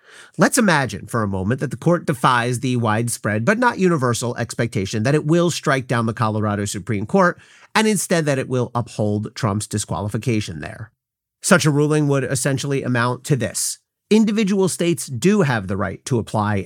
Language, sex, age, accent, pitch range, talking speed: English, male, 40-59, American, 110-155 Hz, 175 wpm